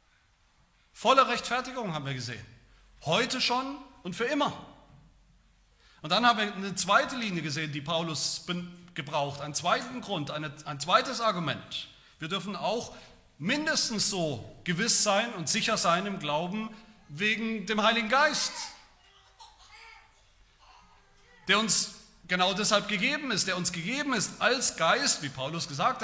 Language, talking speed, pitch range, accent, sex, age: German, 135 wpm, 165-240 Hz, German, male, 40-59